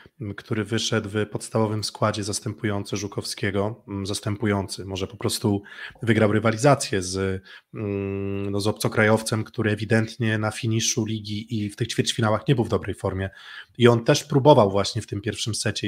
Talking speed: 150 wpm